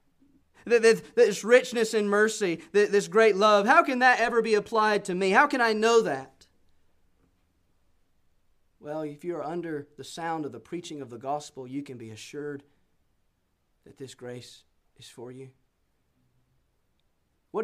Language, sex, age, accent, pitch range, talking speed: English, male, 30-49, American, 145-245 Hz, 150 wpm